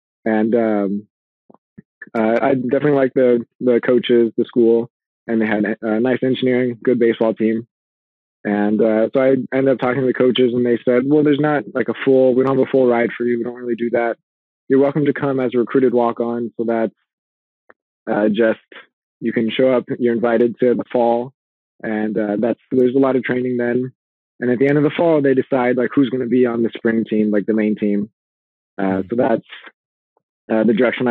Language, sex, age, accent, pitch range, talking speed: English, male, 20-39, American, 110-125 Hz, 210 wpm